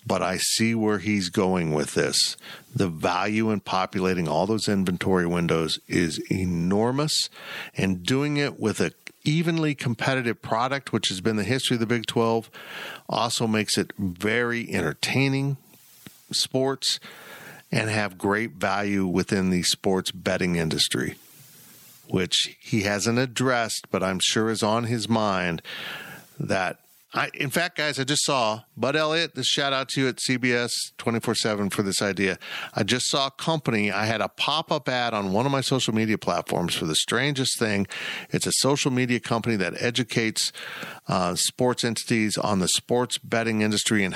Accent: American